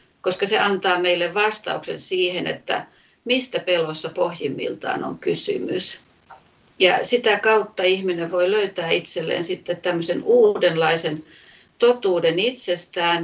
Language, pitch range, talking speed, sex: Finnish, 170-225 Hz, 110 wpm, female